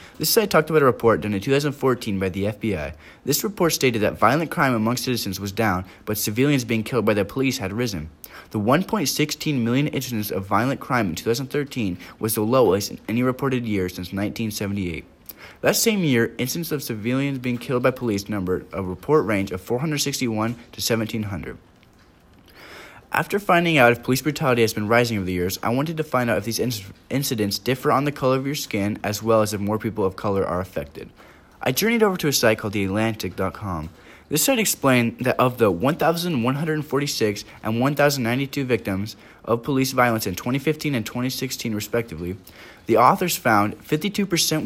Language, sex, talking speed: English, male, 180 wpm